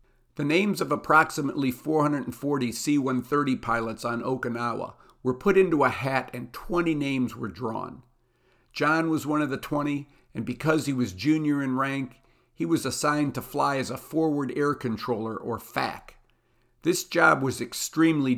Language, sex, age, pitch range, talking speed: English, male, 50-69, 120-145 Hz, 155 wpm